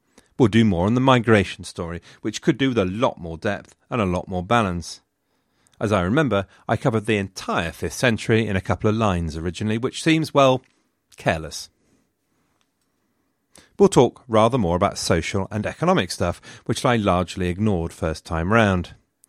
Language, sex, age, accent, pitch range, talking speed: English, male, 40-59, British, 90-120 Hz, 170 wpm